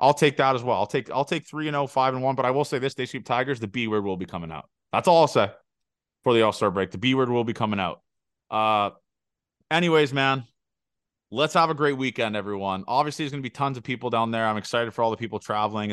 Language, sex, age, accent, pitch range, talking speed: English, male, 20-39, American, 105-130 Hz, 275 wpm